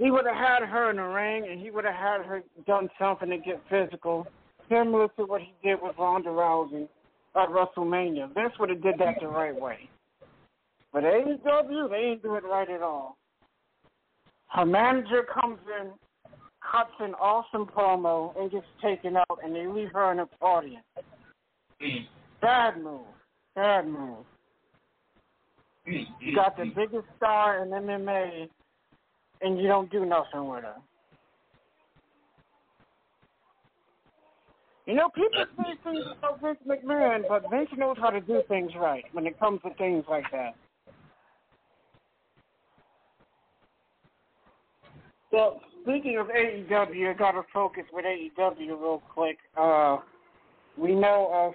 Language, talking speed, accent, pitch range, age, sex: English, 145 wpm, American, 175-215 Hz, 60-79, male